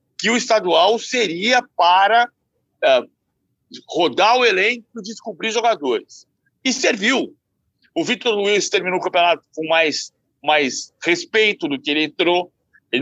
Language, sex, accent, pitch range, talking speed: Portuguese, male, Brazilian, 175-240 Hz, 135 wpm